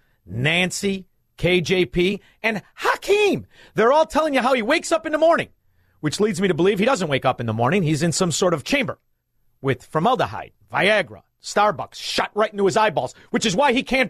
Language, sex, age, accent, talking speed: English, male, 40-59, American, 200 wpm